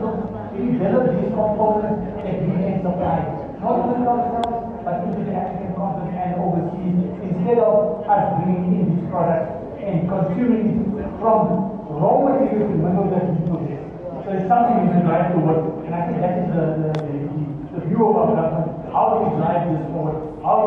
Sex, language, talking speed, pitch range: male, English, 185 wpm, 165-210 Hz